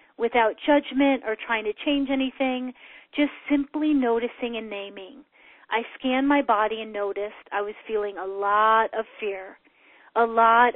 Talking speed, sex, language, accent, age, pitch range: 150 wpm, female, English, American, 30-49, 220-275 Hz